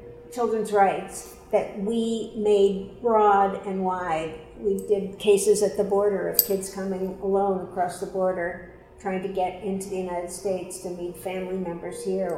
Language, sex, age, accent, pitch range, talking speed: English, female, 60-79, American, 185-205 Hz, 160 wpm